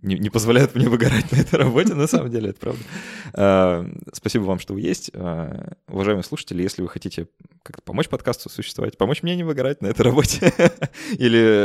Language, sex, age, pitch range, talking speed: Russian, male, 20-39, 85-105 Hz, 185 wpm